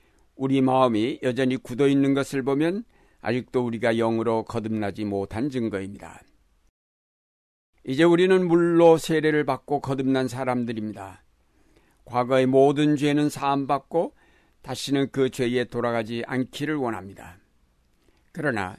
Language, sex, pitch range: Korean, male, 115-145 Hz